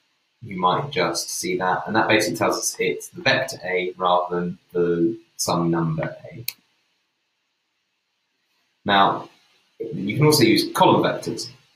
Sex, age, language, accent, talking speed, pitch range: male, 20-39, English, British, 140 wpm, 85-120 Hz